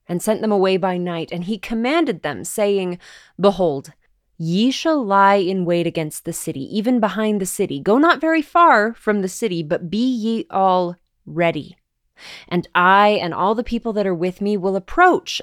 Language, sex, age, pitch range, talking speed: English, female, 20-39, 175-235 Hz, 185 wpm